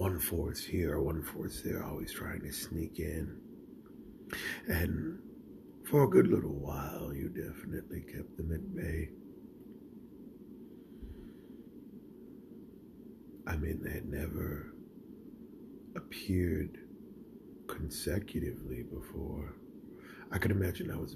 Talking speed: 100 wpm